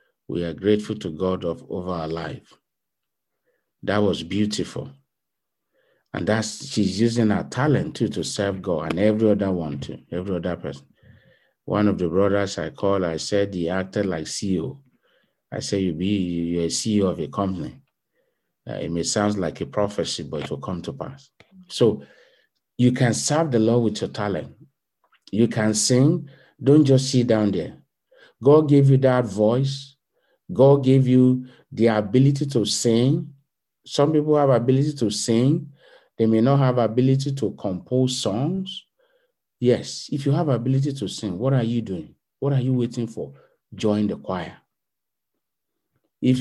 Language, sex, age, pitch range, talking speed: English, male, 50-69, 100-135 Hz, 165 wpm